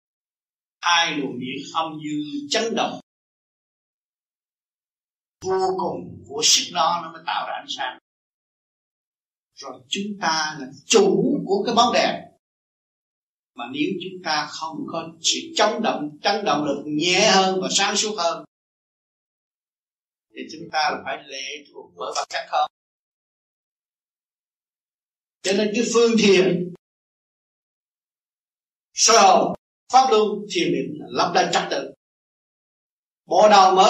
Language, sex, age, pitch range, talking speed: Vietnamese, male, 60-79, 150-215 Hz, 130 wpm